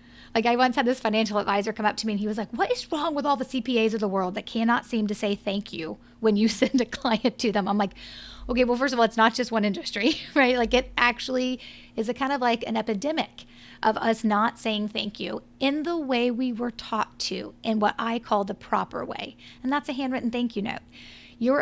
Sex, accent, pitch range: female, American, 210-250 Hz